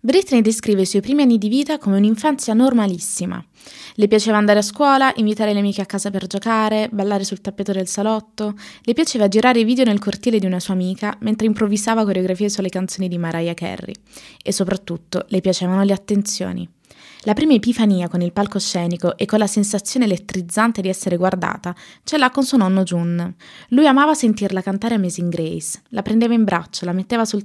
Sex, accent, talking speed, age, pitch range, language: female, native, 190 wpm, 20-39, 180-220 Hz, Italian